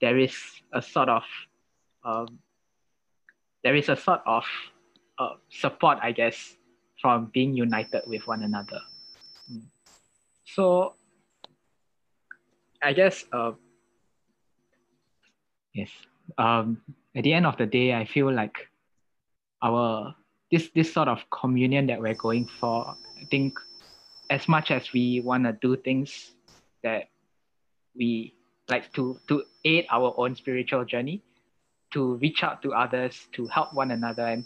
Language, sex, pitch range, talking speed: English, male, 115-135 Hz, 130 wpm